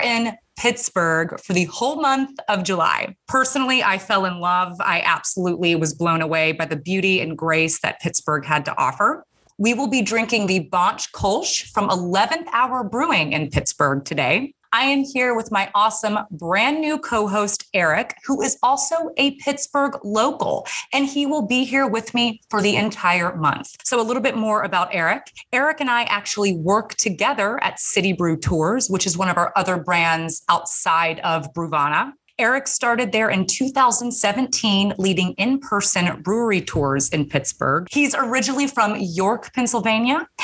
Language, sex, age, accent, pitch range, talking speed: English, female, 30-49, American, 175-250 Hz, 165 wpm